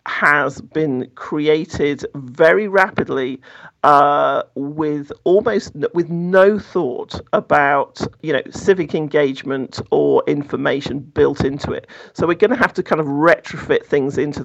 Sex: male